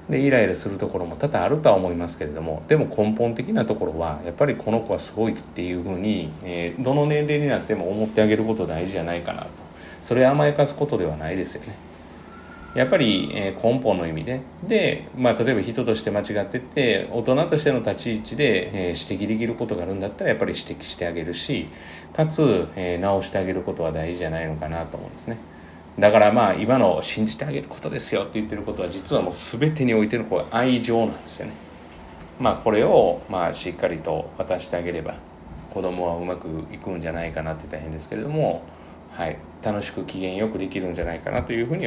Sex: male